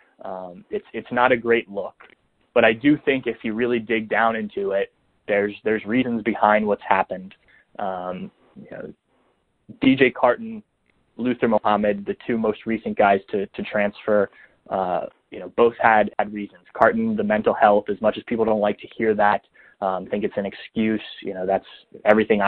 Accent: American